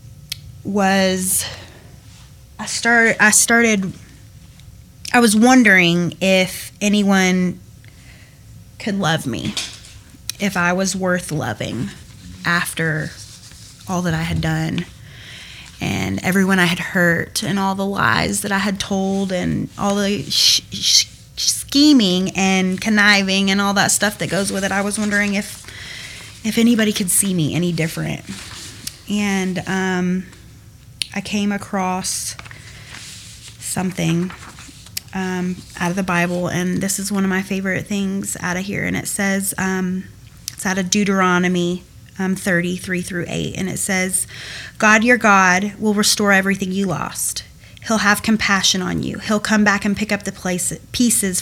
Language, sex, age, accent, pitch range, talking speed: English, female, 20-39, American, 175-200 Hz, 140 wpm